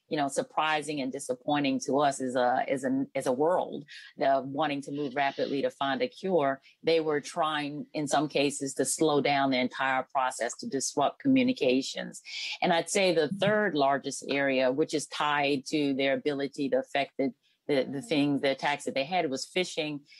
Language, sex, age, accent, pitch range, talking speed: English, female, 40-59, American, 130-155 Hz, 190 wpm